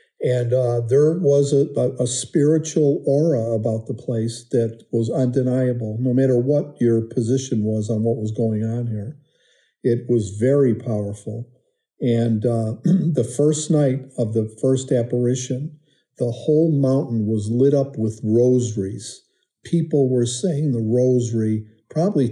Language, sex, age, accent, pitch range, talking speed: English, male, 50-69, American, 115-140 Hz, 145 wpm